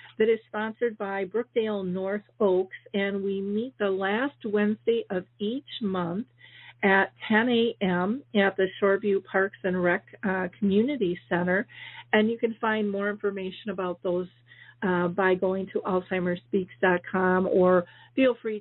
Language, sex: English, female